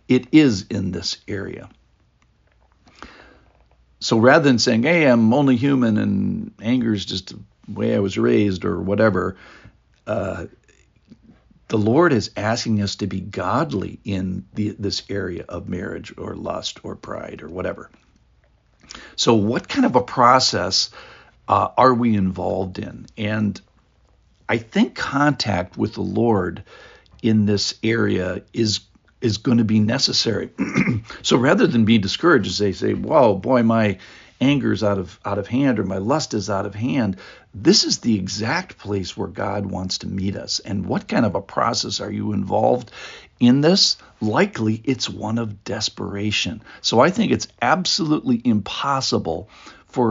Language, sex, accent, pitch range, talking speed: English, male, American, 100-120 Hz, 155 wpm